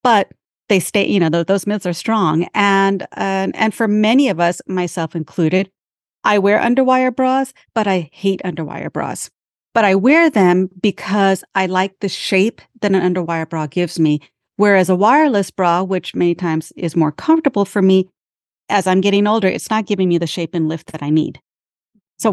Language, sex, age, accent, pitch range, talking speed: English, female, 40-59, American, 175-215 Hz, 190 wpm